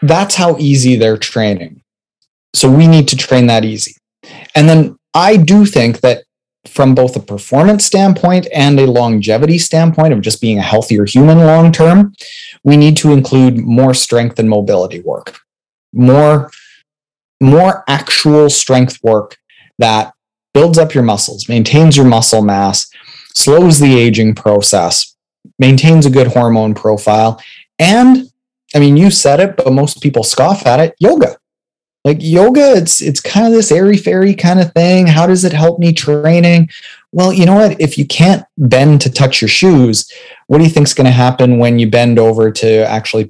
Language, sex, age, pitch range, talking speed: English, male, 30-49, 115-165 Hz, 170 wpm